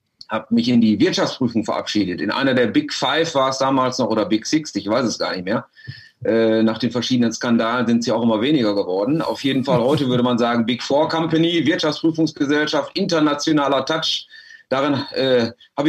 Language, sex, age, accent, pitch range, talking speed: German, male, 40-59, German, 120-155 Hz, 195 wpm